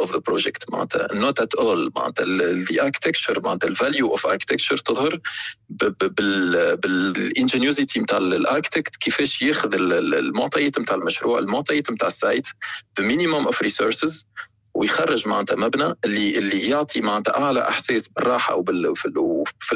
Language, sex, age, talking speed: Arabic, male, 40-59, 120 wpm